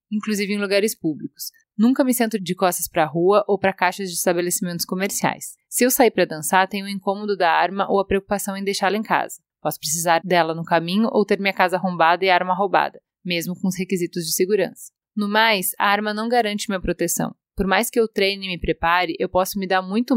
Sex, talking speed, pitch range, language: female, 225 wpm, 180-215 Hz, Portuguese